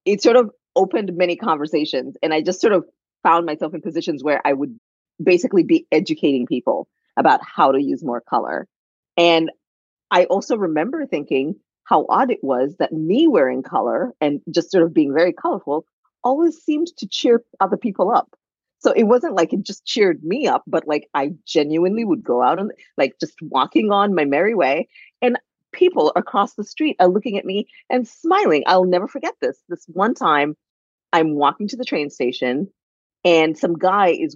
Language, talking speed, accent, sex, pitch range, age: English, 185 wpm, American, female, 150-250 Hz, 40-59